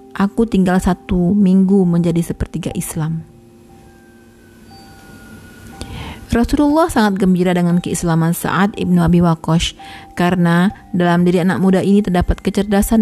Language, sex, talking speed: Indonesian, female, 110 wpm